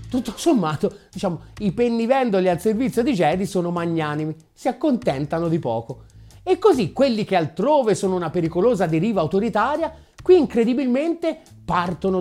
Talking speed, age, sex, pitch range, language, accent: 140 wpm, 30-49, male, 160-240 Hz, Italian, native